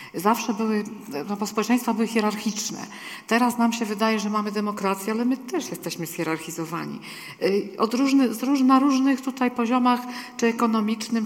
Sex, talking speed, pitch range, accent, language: female, 140 wpm, 190-230 Hz, native, Polish